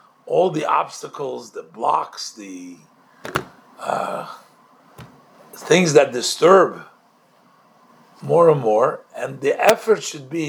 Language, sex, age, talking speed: English, male, 50-69, 105 wpm